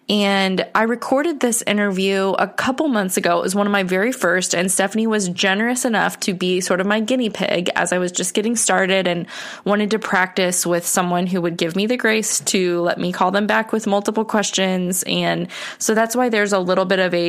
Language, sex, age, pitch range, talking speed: English, female, 20-39, 175-215 Hz, 225 wpm